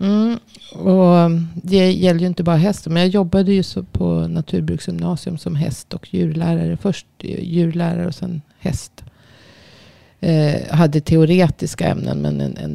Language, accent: Swedish, native